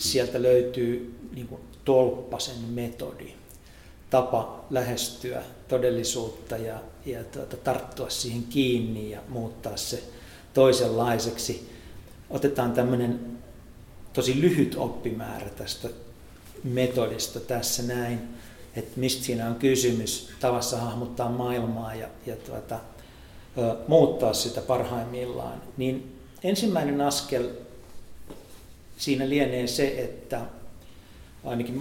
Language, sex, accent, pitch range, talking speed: Finnish, male, native, 115-130 Hz, 95 wpm